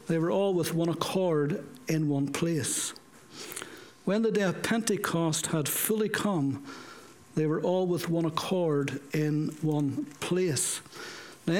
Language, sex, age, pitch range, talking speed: English, male, 60-79, 155-195 Hz, 140 wpm